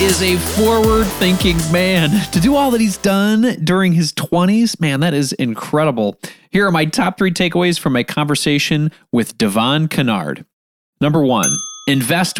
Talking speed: 155 wpm